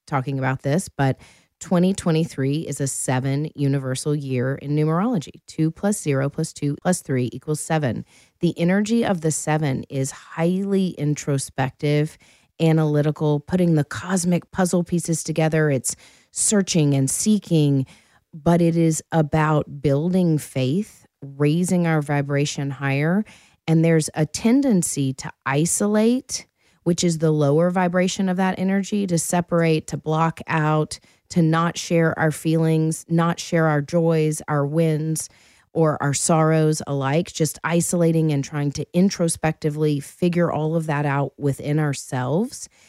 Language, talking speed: English, 135 wpm